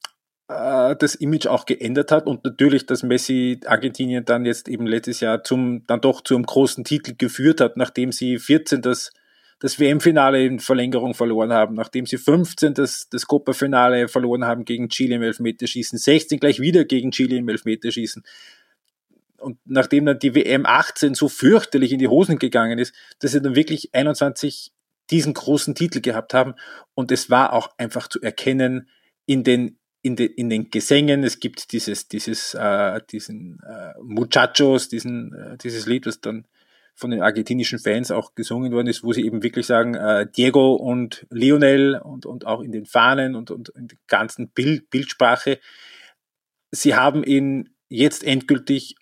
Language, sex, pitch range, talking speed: German, male, 120-140 Hz, 165 wpm